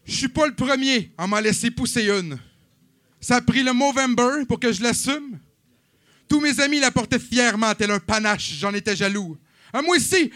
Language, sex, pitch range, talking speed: French, male, 185-245 Hz, 195 wpm